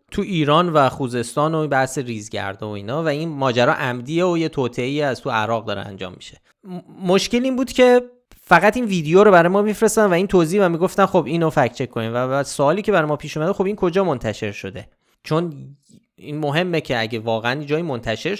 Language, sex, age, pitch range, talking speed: Persian, male, 30-49, 130-180 Hz, 215 wpm